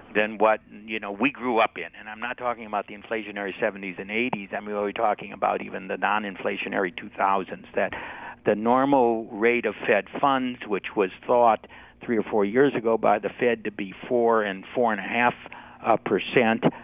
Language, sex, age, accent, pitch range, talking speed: English, male, 60-79, American, 105-120 Hz, 195 wpm